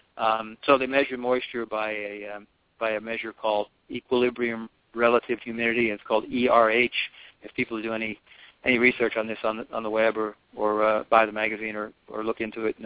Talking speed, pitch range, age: 200 wpm, 110-120 Hz, 50-69